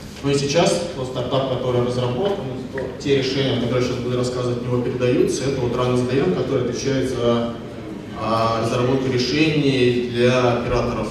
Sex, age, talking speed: male, 20-39, 140 wpm